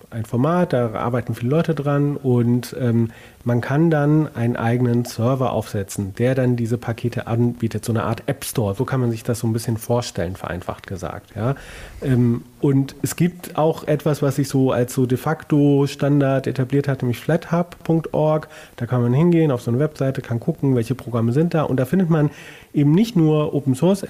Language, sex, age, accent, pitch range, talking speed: German, male, 30-49, German, 120-155 Hz, 195 wpm